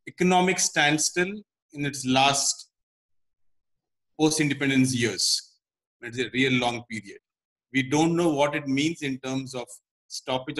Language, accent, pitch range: Telugu, native, 130-155 Hz